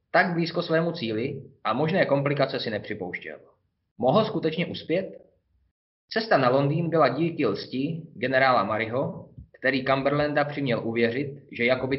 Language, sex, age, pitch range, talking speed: Czech, male, 20-39, 115-145 Hz, 130 wpm